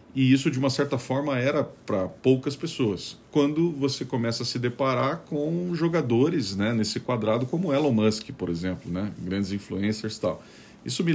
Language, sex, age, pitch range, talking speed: Portuguese, male, 40-59, 100-125 Hz, 180 wpm